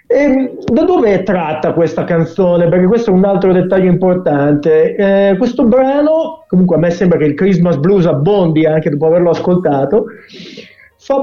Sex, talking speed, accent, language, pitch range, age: male, 165 wpm, Italian, Spanish, 175-230 Hz, 50-69